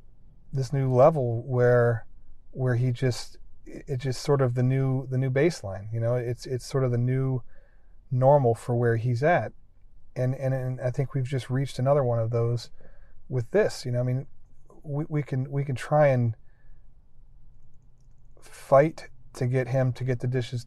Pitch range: 115-135 Hz